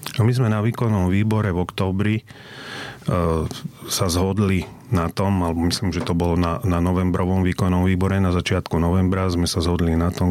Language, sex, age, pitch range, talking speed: Slovak, male, 40-59, 85-95 Hz, 175 wpm